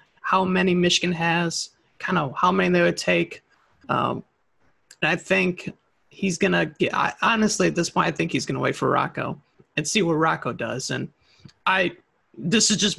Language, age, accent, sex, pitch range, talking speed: English, 30-49, American, male, 155-185 Hz, 195 wpm